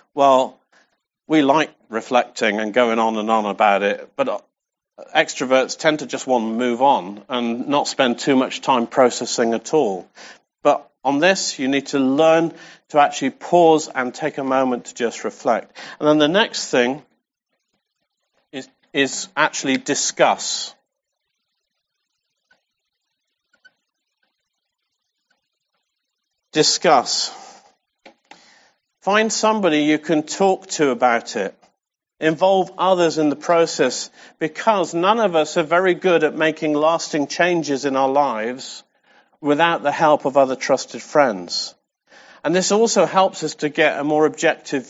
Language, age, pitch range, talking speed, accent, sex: English, 50-69, 135-170 Hz, 135 wpm, British, male